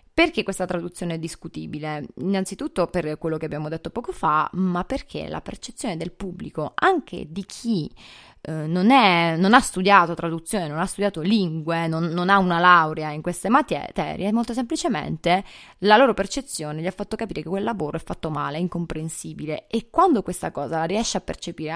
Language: Italian